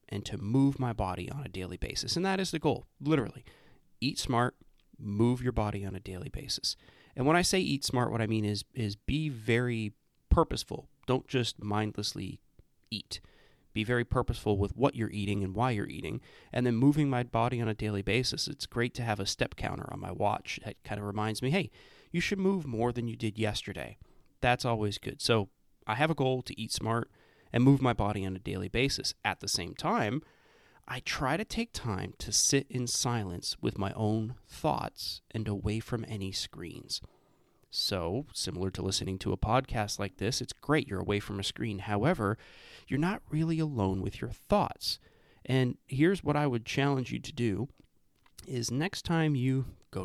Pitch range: 105-135 Hz